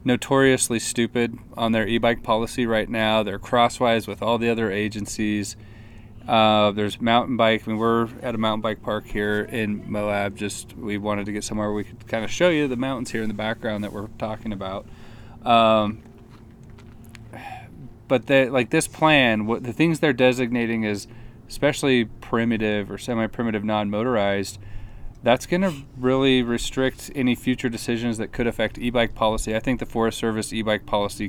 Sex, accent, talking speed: male, American, 170 wpm